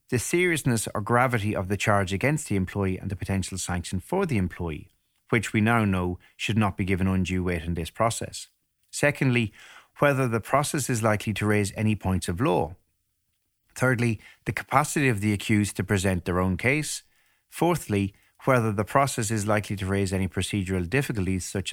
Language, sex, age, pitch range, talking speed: English, male, 30-49, 95-120 Hz, 180 wpm